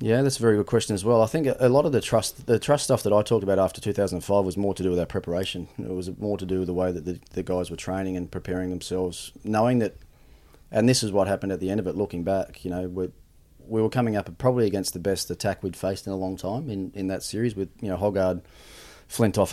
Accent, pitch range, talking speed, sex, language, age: Australian, 90-100 Hz, 275 wpm, male, English, 30-49